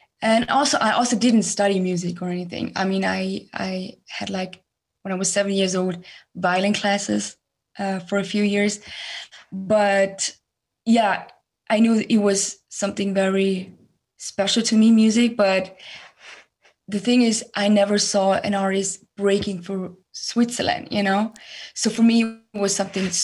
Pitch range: 195-225 Hz